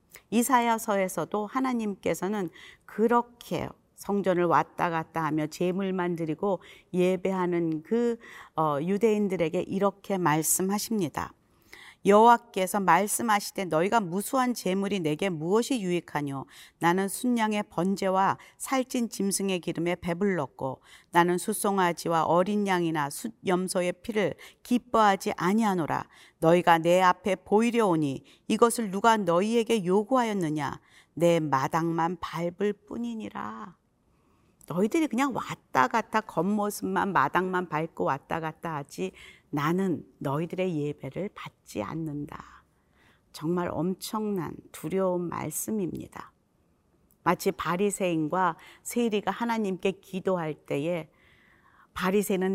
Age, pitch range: 40-59, 170-210 Hz